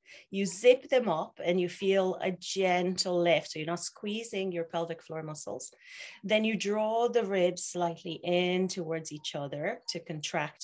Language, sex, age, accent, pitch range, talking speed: English, female, 30-49, Irish, 160-200 Hz, 170 wpm